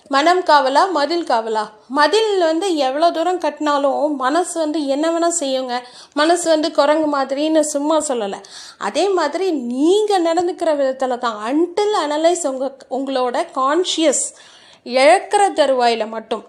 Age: 30-49